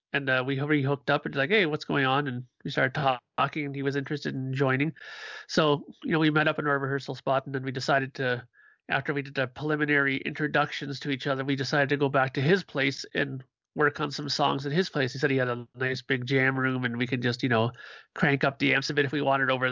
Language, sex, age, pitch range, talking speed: English, male, 30-49, 135-160 Hz, 270 wpm